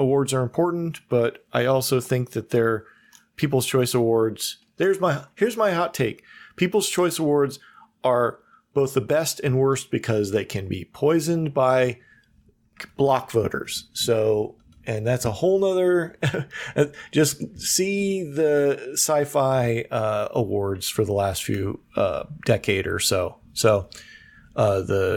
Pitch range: 130-180 Hz